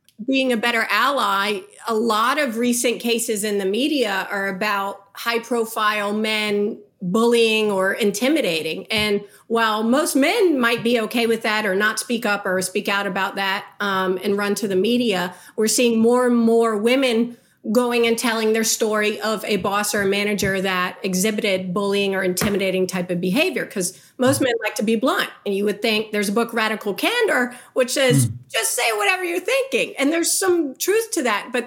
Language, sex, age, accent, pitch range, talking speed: English, female, 40-59, American, 210-265 Hz, 190 wpm